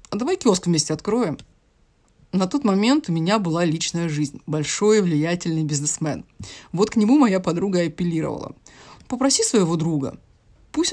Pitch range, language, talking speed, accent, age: 165-220 Hz, Russian, 145 wpm, native, 30-49